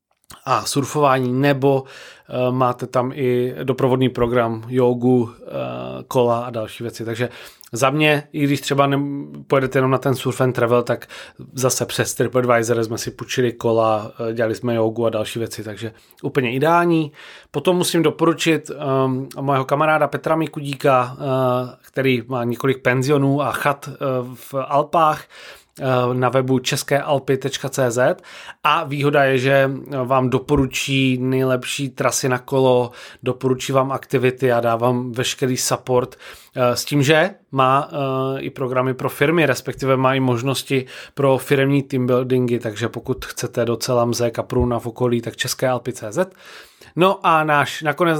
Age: 30-49